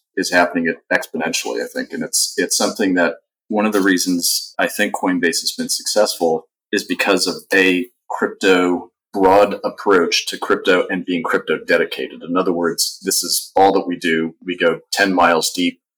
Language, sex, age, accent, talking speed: English, male, 40-59, American, 175 wpm